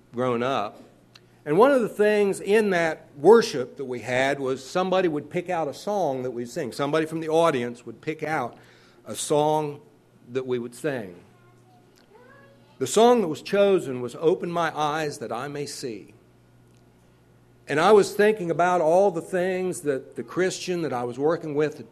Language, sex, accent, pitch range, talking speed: English, male, American, 115-165 Hz, 180 wpm